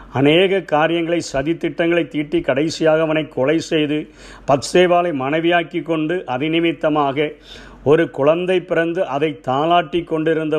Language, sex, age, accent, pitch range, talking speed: Tamil, male, 50-69, native, 145-170 Hz, 110 wpm